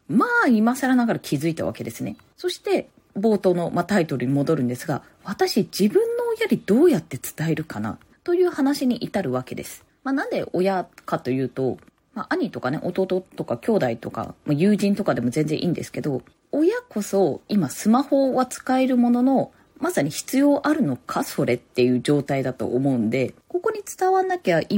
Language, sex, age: Japanese, female, 20-39